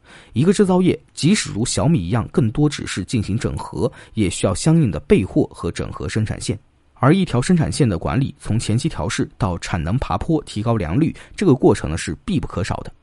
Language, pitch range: Chinese, 100-150 Hz